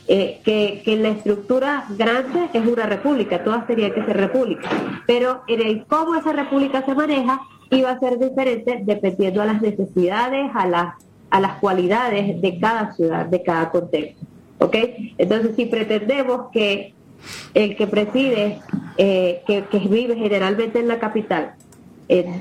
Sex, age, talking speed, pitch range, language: female, 30-49, 155 wpm, 190-240 Hz, Spanish